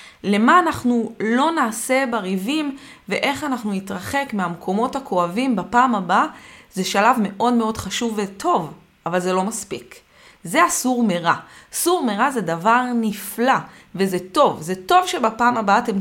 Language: Hebrew